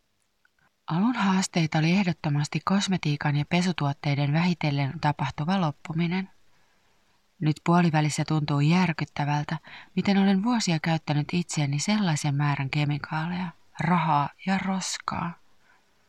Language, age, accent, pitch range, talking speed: Finnish, 30-49, native, 145-180 Hz, 95 wpm